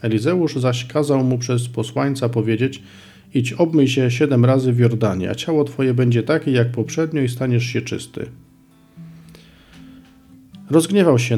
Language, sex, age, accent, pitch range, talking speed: Polish, male, 40-59, native, 115-135 Hz, 140 wpm